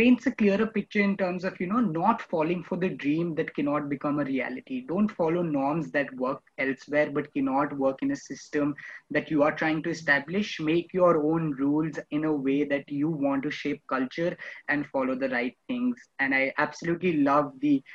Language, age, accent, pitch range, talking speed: English, 20-39, Indian, 145-200 Hz, 200 wpm